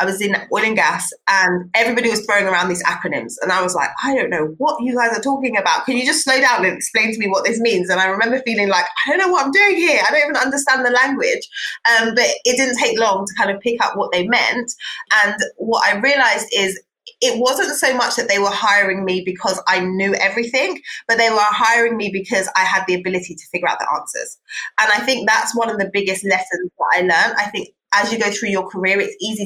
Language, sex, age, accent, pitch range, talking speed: English, female, 20-39, British, 195-250 Hz, 255 wpm